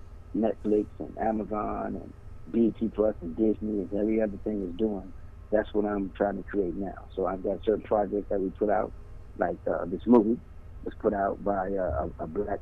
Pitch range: 95-105 Hz